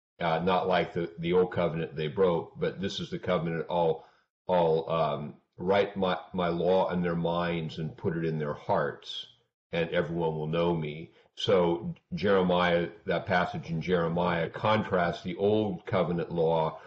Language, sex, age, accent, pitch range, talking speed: English, male, 50-69, American, 85-100 Hz, 165 wpm